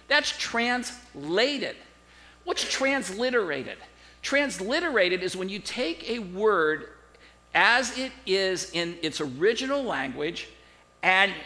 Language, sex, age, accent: English, male, 50-69, American